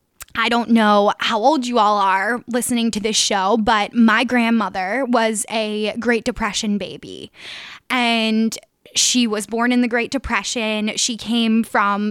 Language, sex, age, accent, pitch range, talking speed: English, female, 10-29, American, 210-240 Hz, 155 wpm